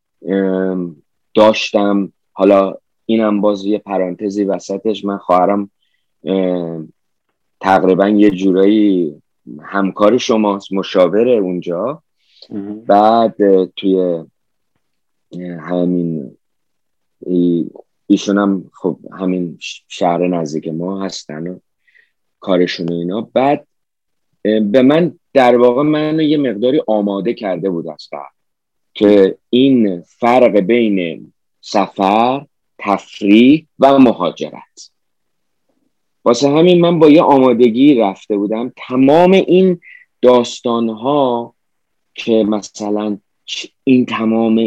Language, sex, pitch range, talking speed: Persian, male, 95-120 Hz, 90 wpm